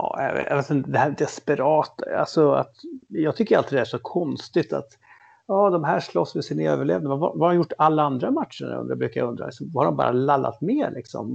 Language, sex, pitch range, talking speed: English, male, 125-150 Hz, 190 wpm